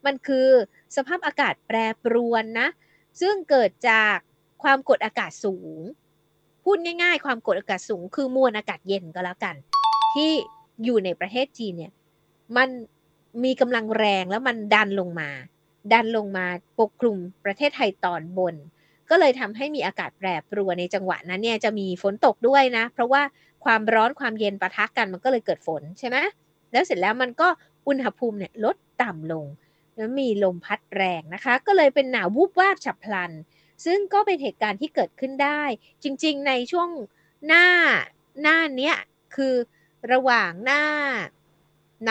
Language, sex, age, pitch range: Thai, female, 20-39, 190-275 Hz